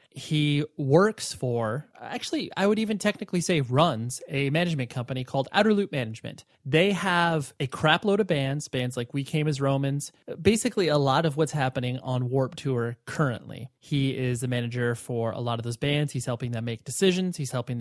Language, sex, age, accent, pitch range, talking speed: English, male, 30-49, American, 130-175 Hz, 190 wpm